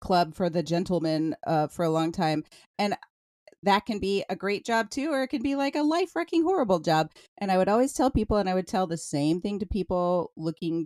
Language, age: English, 30-49